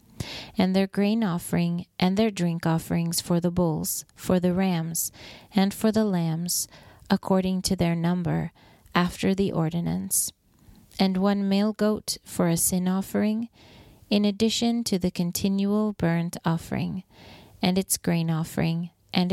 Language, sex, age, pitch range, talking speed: English, female, 30-49, 165-195 Hz, 140 wpm